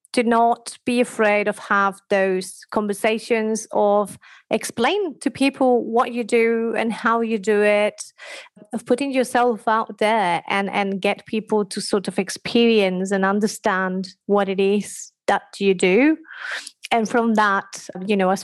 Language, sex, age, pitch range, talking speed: English, female, 30-49, 195-230 Hz, 155 wpm